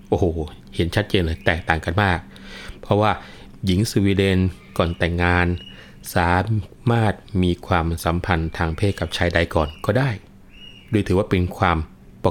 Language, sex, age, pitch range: Thai, male, 20-39, 85-105 Hz